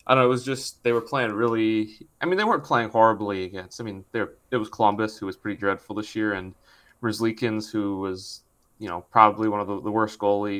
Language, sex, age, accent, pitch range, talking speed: English, male, 20-39, American, 100-120 Hz, 240 wpm